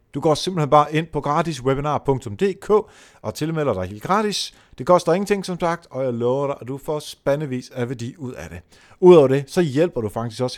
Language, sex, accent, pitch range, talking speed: Danish, male, native, 120-165 Hz, 210 wpm